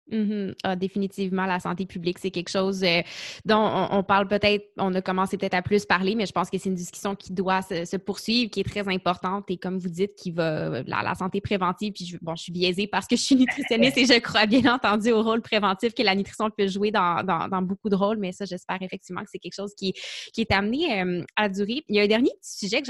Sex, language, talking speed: female, French, 265 wpm